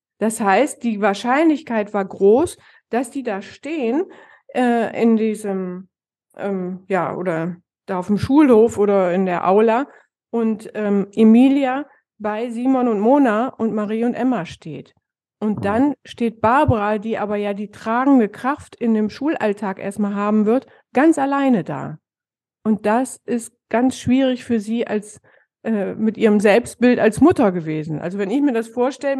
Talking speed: 155 wpm